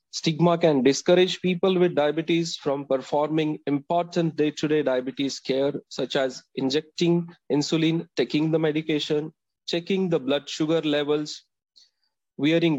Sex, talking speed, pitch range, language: male, 115 wpm, 140-170 Hz, English